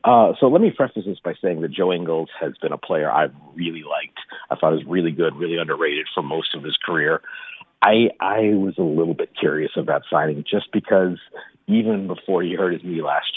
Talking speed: 220 wpm